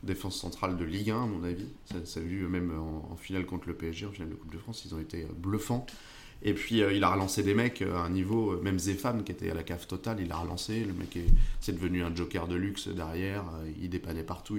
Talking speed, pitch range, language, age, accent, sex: 265 wpm, 90-105 Hz, French, 30-49, French, male